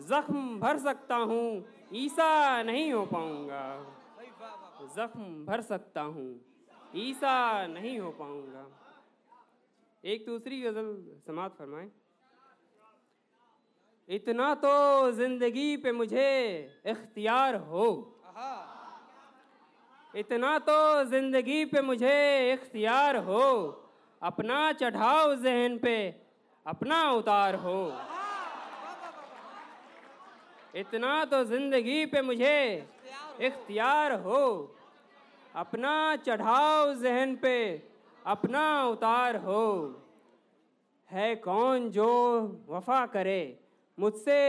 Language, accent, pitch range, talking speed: Hindi, native, 215-285 Hz, 85 wpm